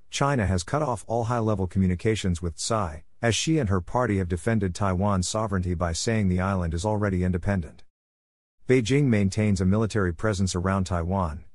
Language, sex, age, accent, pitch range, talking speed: English, male, 50-69, American, 90-115 Hz, 165 wpm